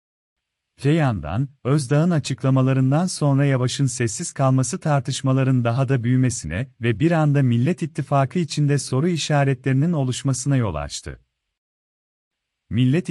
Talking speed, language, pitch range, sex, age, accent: 105 wpm, Turkish, 120-150 Hz, male, 40-59, native